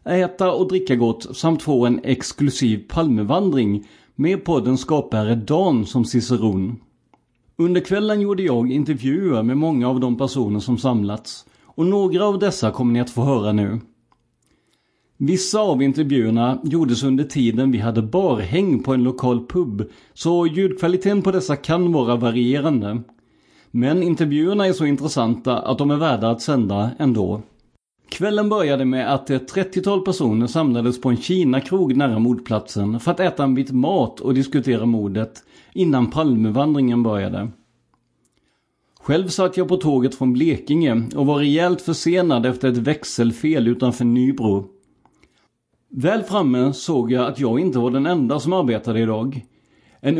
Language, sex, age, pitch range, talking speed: Swedish, male, 30-49, 120-160 Hz, 150 wpm